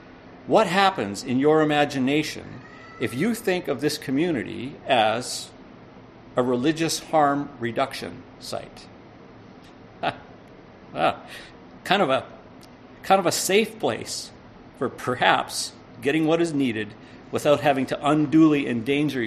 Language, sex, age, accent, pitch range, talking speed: English, male, 50-69, American, 110-140 Hz, 110 wpm